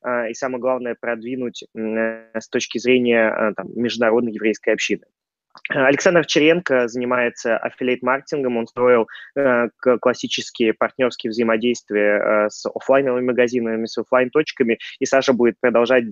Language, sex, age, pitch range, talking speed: Russian, male, 20-39, 115-130 Hz, 110 wpm